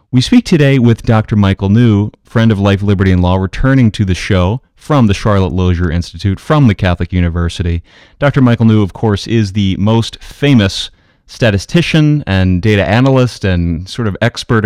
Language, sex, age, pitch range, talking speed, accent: English, male, 30-49, 85-105 Hz, 175 wpm, American